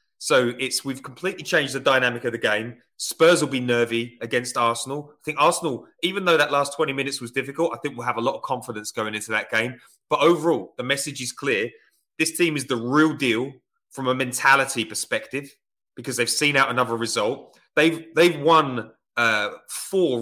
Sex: male